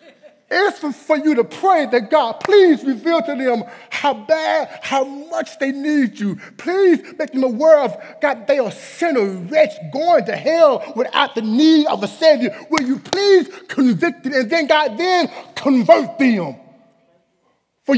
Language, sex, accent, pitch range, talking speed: English, male, American, 210-305 Hz, 165 wpm